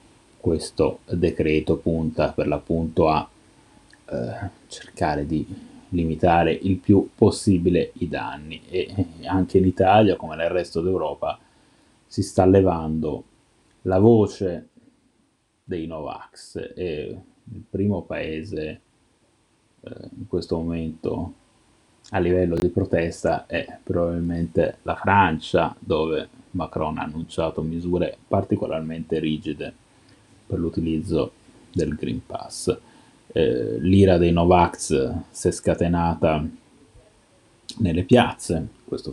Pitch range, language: 80-95 Hz, Italian